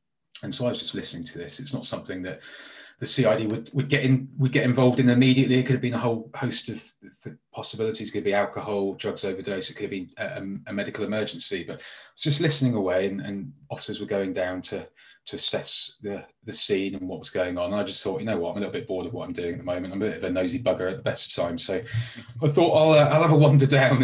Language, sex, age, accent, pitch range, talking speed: English, male, 30-49, British, 100-130 Hz, 275 wpm